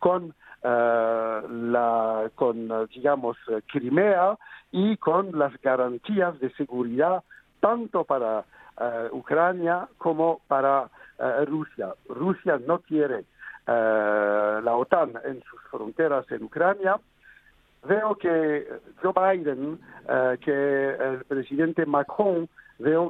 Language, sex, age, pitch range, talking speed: Spanish, male, 60-79, 120-165 Hz, 105 wpm